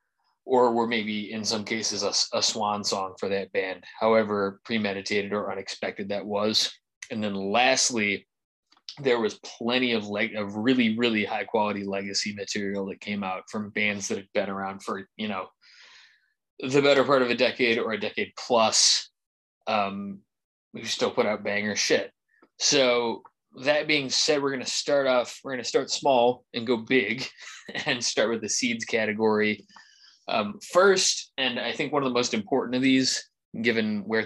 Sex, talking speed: male, 175 wpm